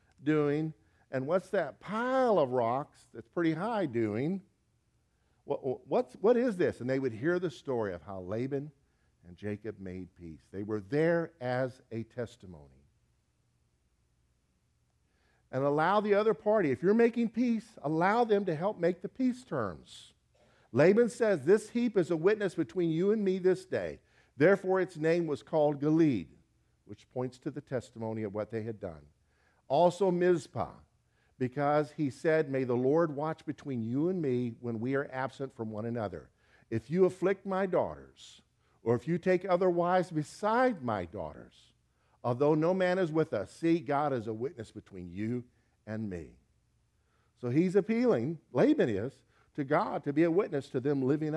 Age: 50-69